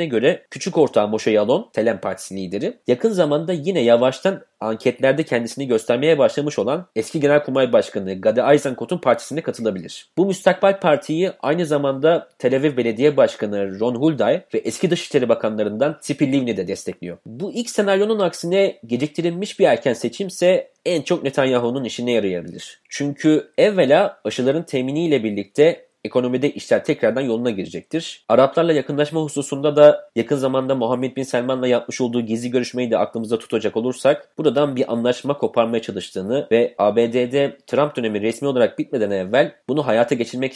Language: Turkish